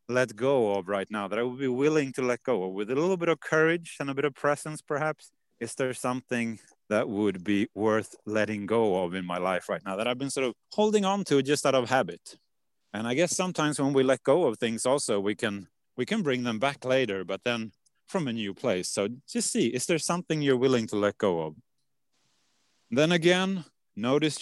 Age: 30-49